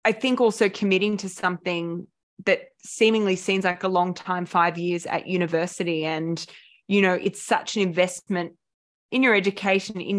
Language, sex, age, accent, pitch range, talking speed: English, female, 20-39, Australian, 175-210 Hz, 165 wpm